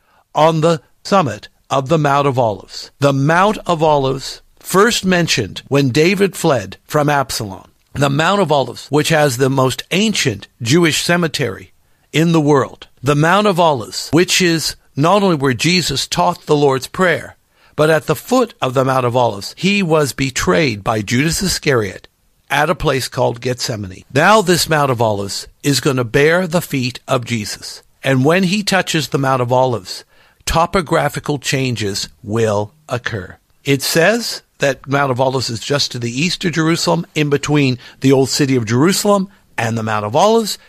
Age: 60-79